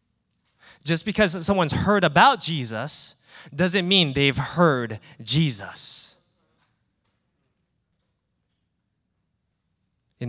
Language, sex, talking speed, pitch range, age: English, male, 70 wpm, 130-185 Hz, 20-39